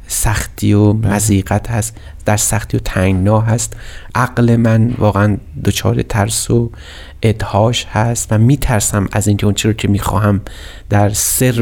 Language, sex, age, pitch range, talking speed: Persian, male, 30-49, 105-120 Hz, 150 wpm